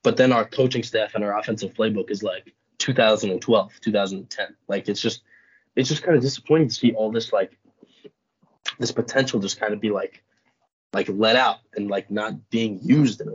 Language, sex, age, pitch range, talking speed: English, male, 20-39, 110-130 Hz, 195 wpm